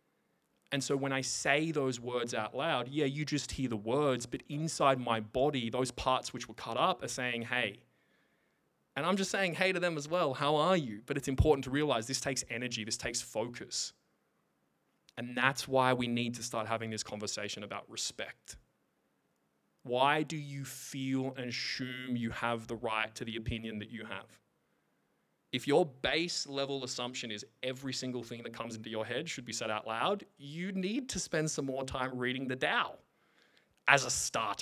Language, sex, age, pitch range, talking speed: English, male, 20-39, 120-145 Hz, 190 wpm